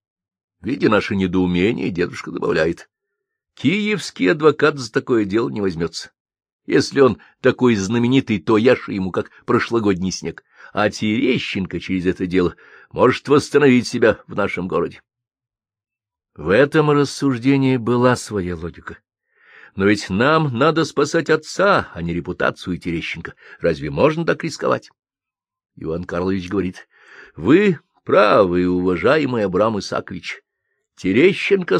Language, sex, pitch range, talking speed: Russian, male, 95-150 Hz, 115 wpm